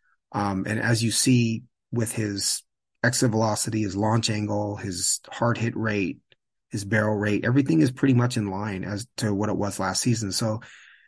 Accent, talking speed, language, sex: American, 180 wpm, English, male